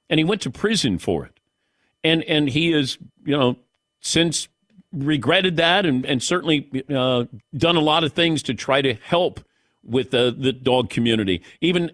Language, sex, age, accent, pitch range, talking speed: English, male, 50-69, American, 130-175 Hz, 175 wpm